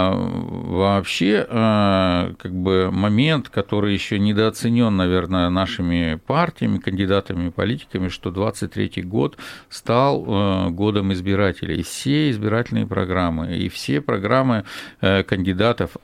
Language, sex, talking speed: Russian, male, 100 wpm